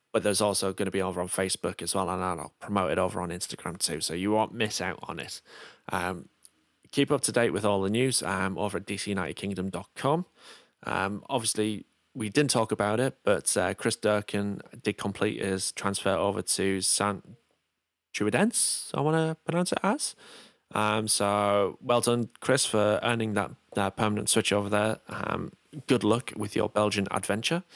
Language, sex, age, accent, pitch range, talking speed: English, male, 20-39, British, 95-130 Hz, 185 wpm